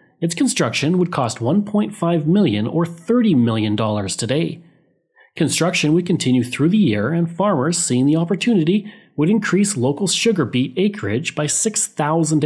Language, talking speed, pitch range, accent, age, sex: English, 140 wpm, 130-195 Hz, Canadian, 30-49, male